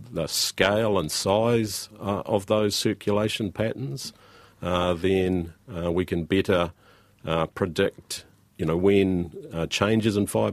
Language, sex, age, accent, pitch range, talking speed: English, male, 40-59, Australian, 80-100 Hz, 135 wpm